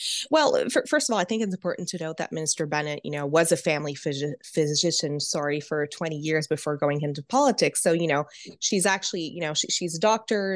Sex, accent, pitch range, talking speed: female, American, 155-215 Hz, 220 wpm